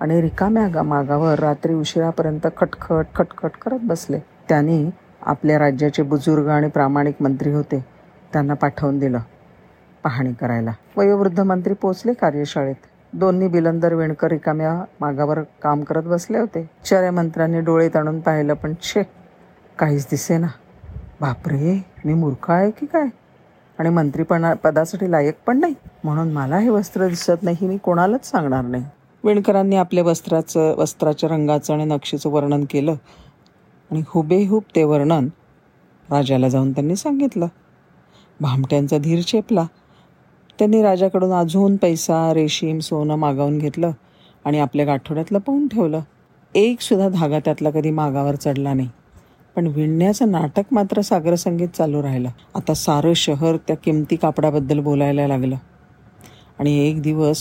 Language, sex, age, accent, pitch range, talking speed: Marathi, female, 50-69, native, 150-185 Hz, 130 wpm